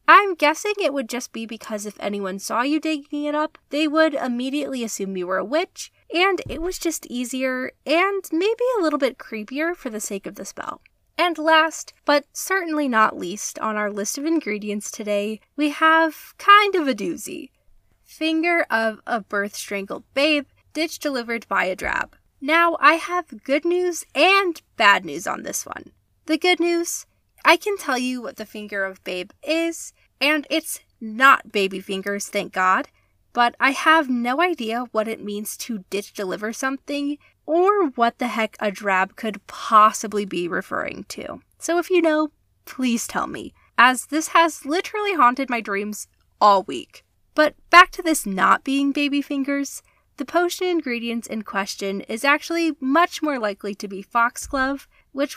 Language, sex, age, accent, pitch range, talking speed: English, female, 20-39, American, 220-320 Hz, 175 wpm